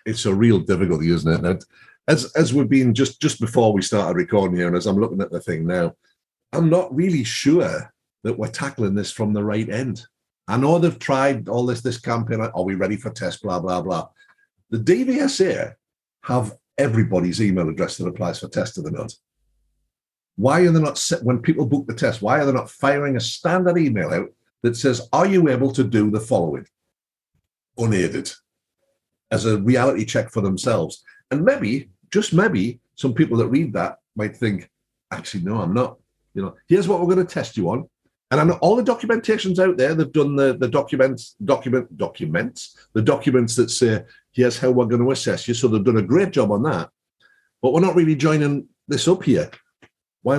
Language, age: English, 50-69